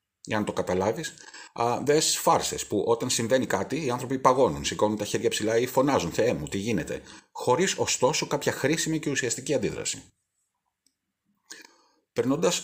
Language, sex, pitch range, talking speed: Greek, male, 100-135 Hz, 150 wpm